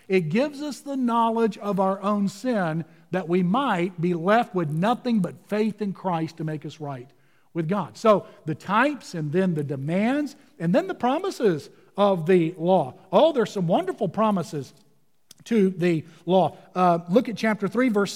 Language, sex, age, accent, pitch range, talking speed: English, male, 50-69, American, 190-255 Hz, 180 wpm